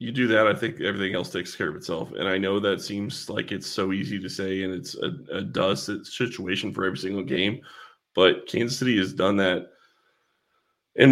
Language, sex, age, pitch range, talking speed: English, male, 30-49, 100-130 Hz, 210 wpm